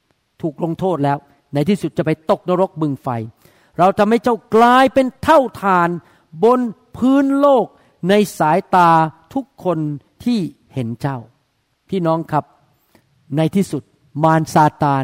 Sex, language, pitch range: male, Thai, 145-210 Hz